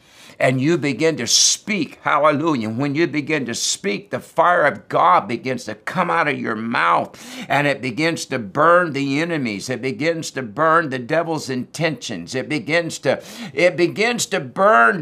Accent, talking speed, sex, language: American, 170 wpm, male, English